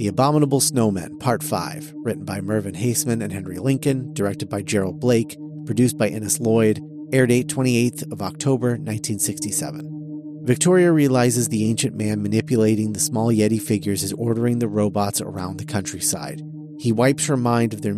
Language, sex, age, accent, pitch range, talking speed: English, male, 30-49, American, 105-150 Hz, 160 wpm